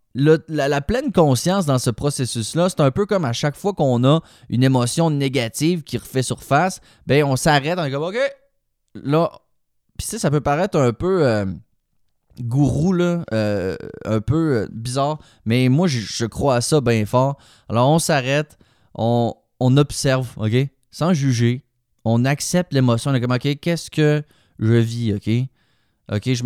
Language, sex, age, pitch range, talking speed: French, male, 20-39, 115-155 Hz, 175 wpm